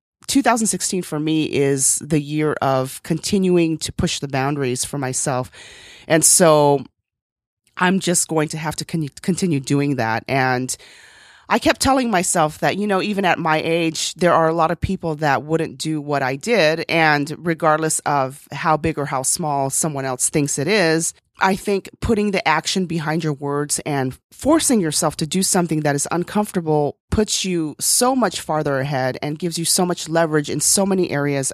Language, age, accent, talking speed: English, 30-49, American, 180 wpm